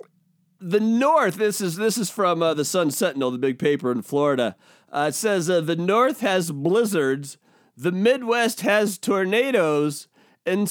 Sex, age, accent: male, 40-59, American